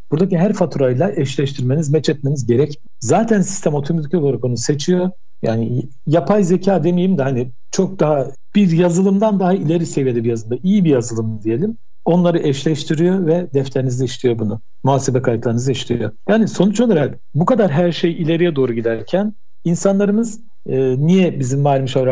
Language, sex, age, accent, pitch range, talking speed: Turkish, male, 60-79, native, 130-180 Hz, 150 wpm